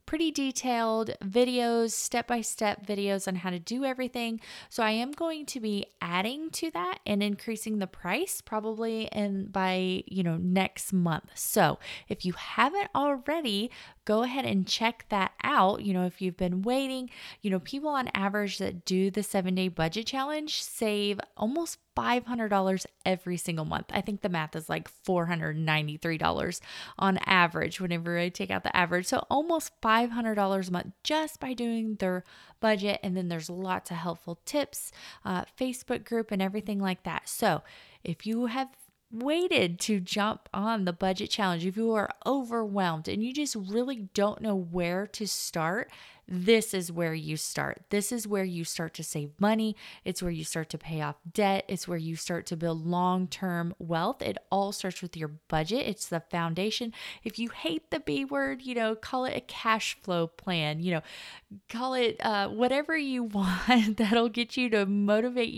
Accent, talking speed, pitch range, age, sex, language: American, 180 wpm, 180-235 Hz, 20-39, female, English